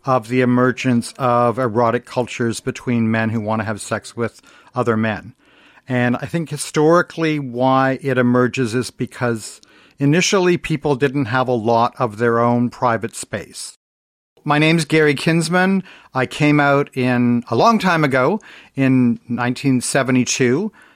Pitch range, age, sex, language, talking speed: 120-145 Hz, 50-69, male, English, 145 wpm